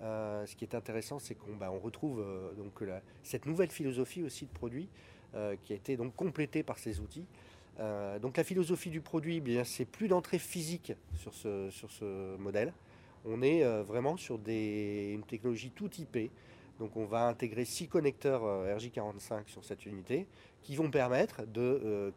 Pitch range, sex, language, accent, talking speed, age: 105-140 Hz, male, French, French, 190 wpm, 40-59